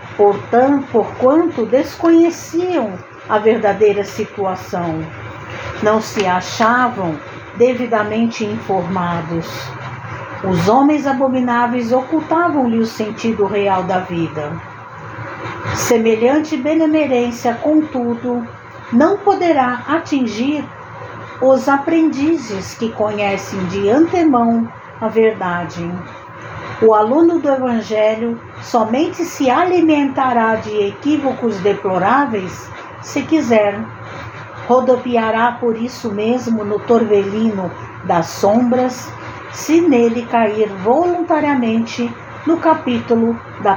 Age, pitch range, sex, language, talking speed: 60-79, 195-265 Hz, female, Portuguese, 85 wpm